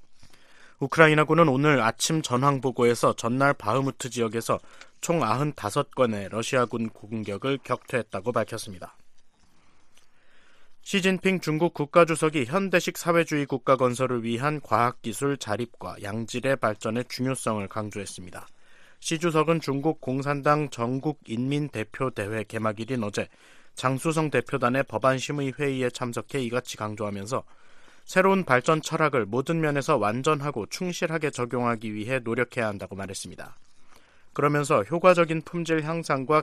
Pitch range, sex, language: 115-150 Hz, male, Korean